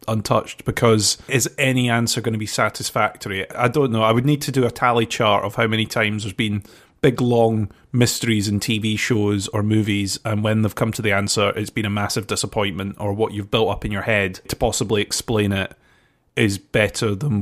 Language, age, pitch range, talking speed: English, 30-49, 105-125 Hz, 210 wpm